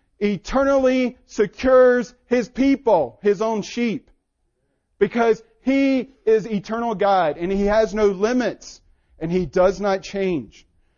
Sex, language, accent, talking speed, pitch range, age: male, English, American, 120 wpm, 135-195 Hz, 40-59